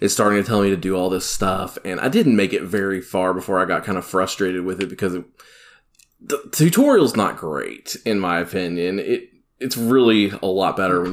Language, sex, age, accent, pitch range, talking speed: English, male, 20-39, American, 95-105 Hz, 220 wpm